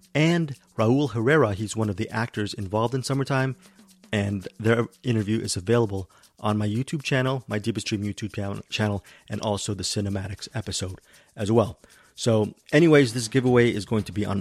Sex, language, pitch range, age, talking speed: male, English, 105-125 Hz, 30-49, 170 wpm